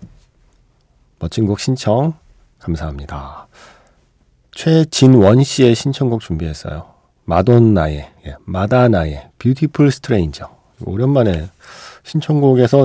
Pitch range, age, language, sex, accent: 95-135 Hz, 40-59, Korean, male, native